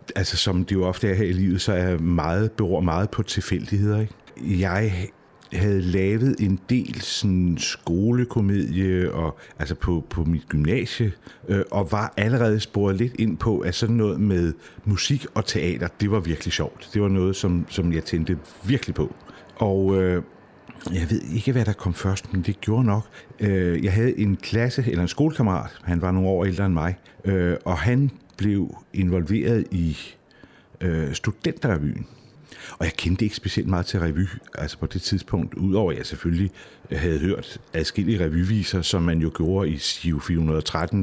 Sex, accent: male, native